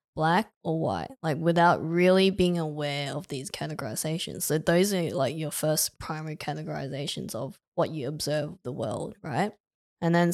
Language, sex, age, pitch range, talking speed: English, female, 10-29, 155-180 Hz, 165 wpm